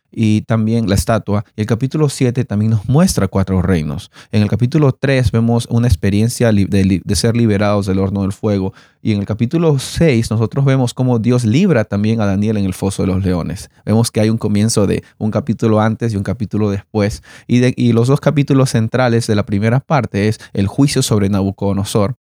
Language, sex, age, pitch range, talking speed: Spanish, male, 30-49, 105-130 Hz, 205 wpm